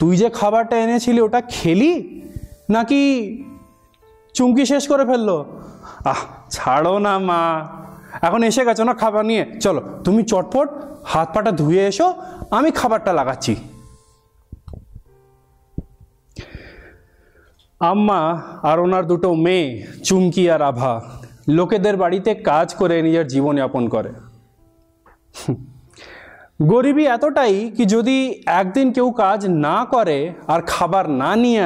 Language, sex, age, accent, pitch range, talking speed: Bengali, male, 30-49, native, 135-215 Hz, 85 wpm